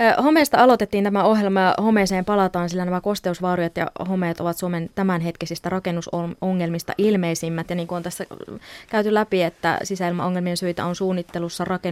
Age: 20-39